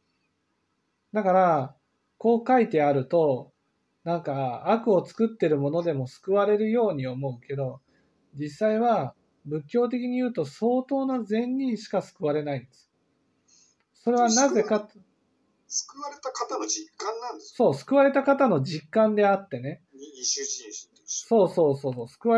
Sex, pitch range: male, 150-245 Hz